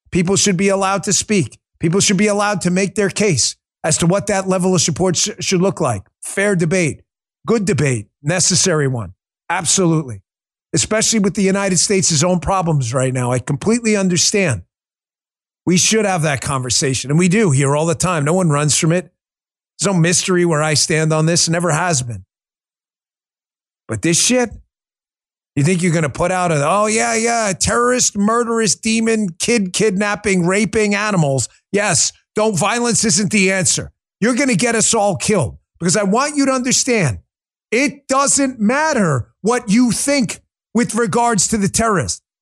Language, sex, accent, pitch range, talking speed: English, male, American, 165-225 Hz, 175 wpm